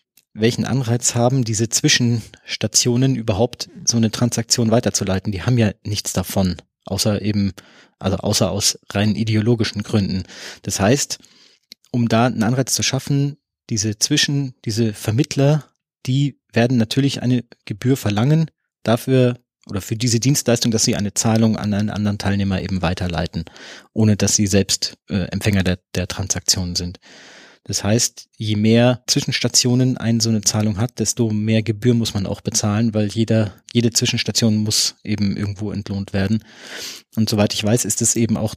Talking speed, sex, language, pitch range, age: 155 wpm, male, German, 105-120 Hz, 30-49